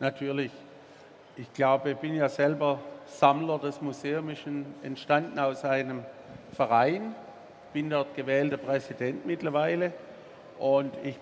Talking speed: 120 wpm